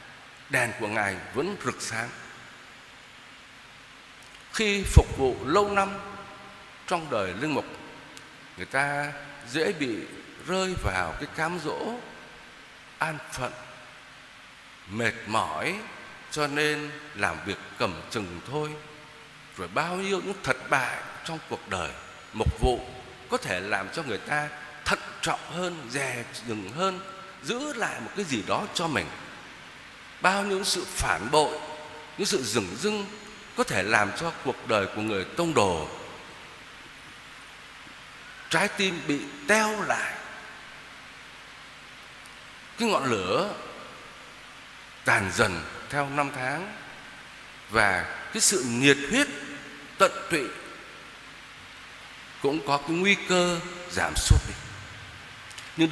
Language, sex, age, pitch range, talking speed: Vietnamese, male, 60-79, 130-190 Hz, 120 wpm